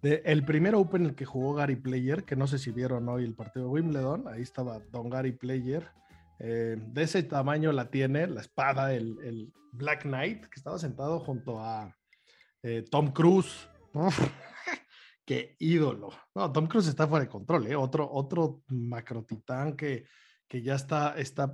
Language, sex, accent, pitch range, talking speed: Spanish, male, Mexican, 125-155 Hz, 175 wpm